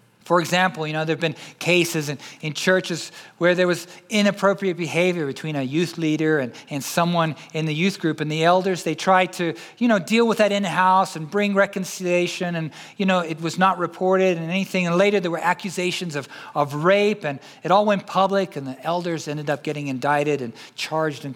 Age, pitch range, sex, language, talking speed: 40-59, 150-185 Hz, male, English, 210 wpm